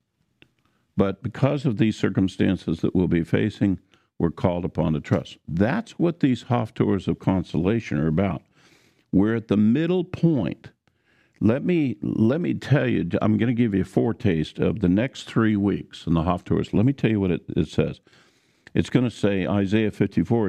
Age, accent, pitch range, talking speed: 50-69, American, 95-145 Hz, 185 wpm